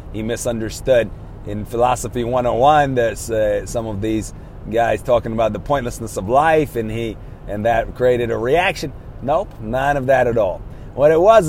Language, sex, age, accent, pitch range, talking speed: English, male, 30-49, American, 115-155 Hz, 160 wpm